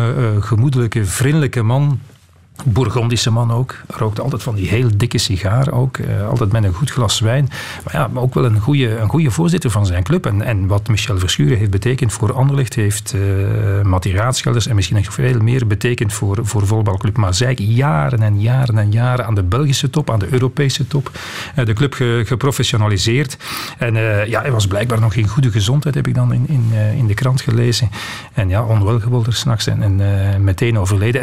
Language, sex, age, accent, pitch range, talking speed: Dutch, male, 40-59, Dutch, 105-125 Hz, 200 wpm